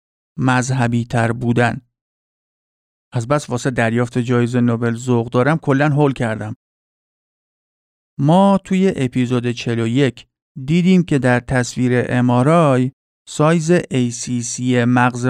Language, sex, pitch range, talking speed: Persian, male, 120-145 Hz, 110 wpm